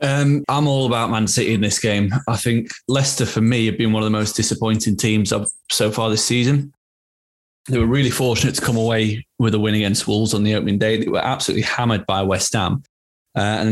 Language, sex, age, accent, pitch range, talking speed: English, male, 20-39, British, 105-120 Hz, 220 wpm